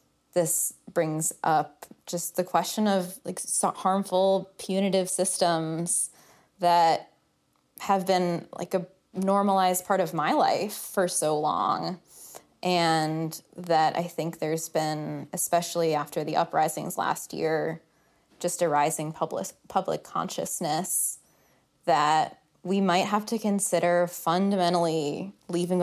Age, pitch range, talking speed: 20-39, 160-190 Hz, 120 wpm